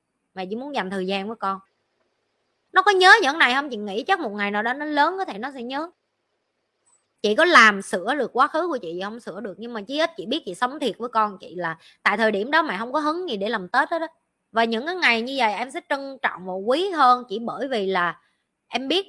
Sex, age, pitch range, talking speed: male, 20-39, 200-285 Hz, 270 wpm